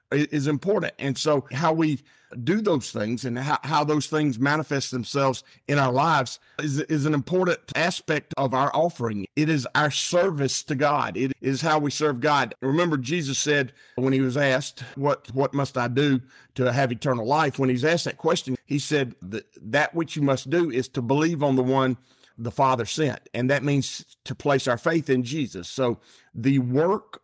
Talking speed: 195 wpm